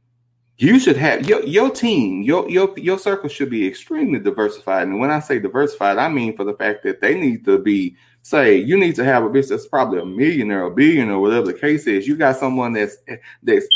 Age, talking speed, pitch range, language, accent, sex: 30-49, 225 wpm, 115-160 Hz, English, American, male